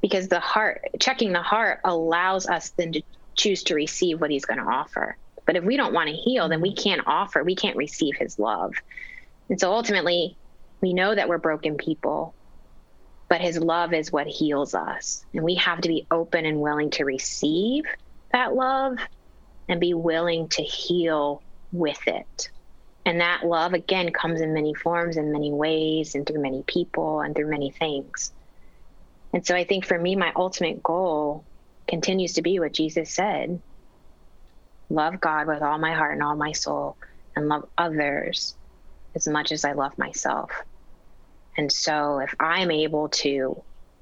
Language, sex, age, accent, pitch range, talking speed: English, female, 20-39, American, 150-175 Hz, 175 wpm